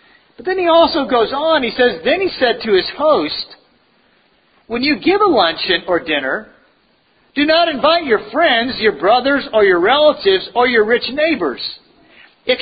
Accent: American